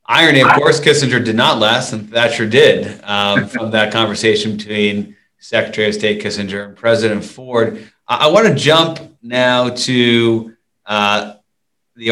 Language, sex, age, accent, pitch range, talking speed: English, male, 30-49, American, 105-120 Hz, 155 wpm